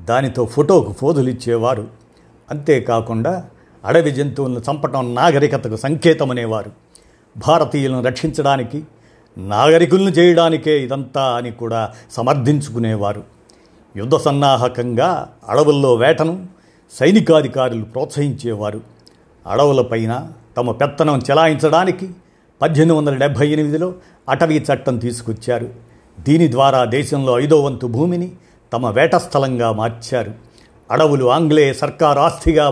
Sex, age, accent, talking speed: male, 50-69, native, 85 wpm